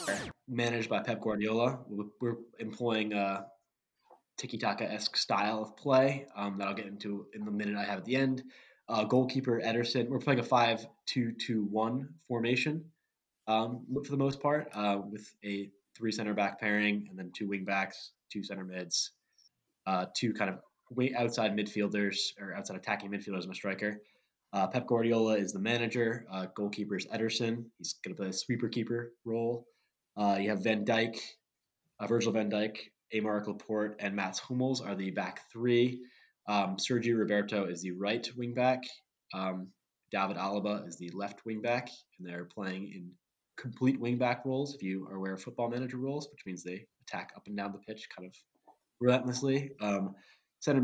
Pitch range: 100-125 Hz